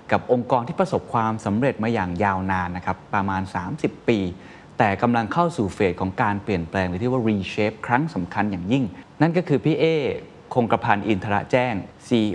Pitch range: 95-125 Hz